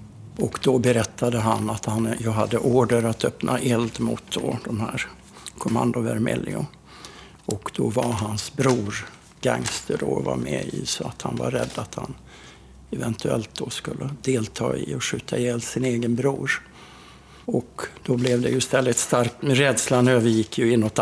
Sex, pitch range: male, 110-130 Hz